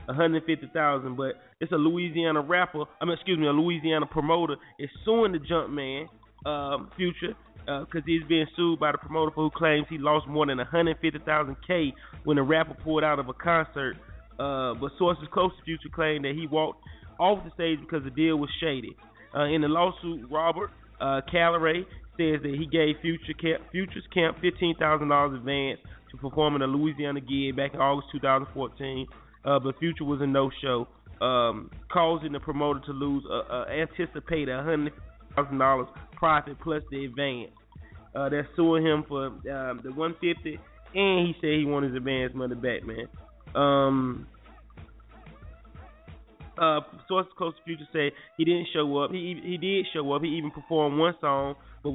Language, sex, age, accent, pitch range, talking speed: English, male, 30-49, American, 140-165 Hz, 190 wpm